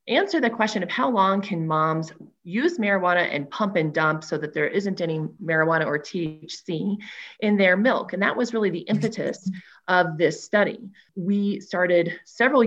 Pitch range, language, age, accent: 175-220 Hz, English, 30-49, American